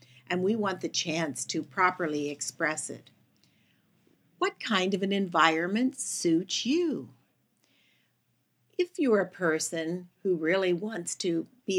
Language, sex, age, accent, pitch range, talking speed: English, female, 60-79, American, 165-215 Hz, 125 wpm